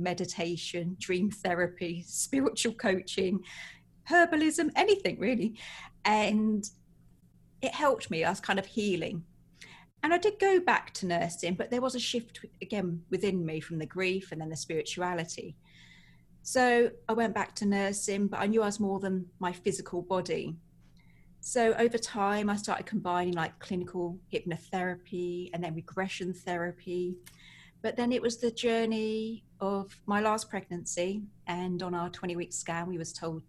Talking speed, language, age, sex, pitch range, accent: 155 wpm, English, 40-59, female, 170-210 Hz, British